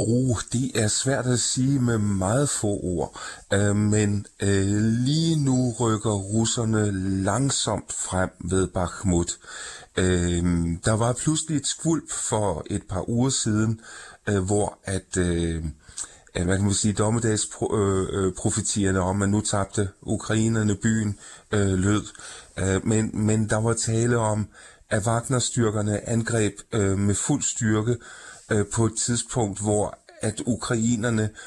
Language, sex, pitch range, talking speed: Danish, male, 95-115 Hz, 130 wpm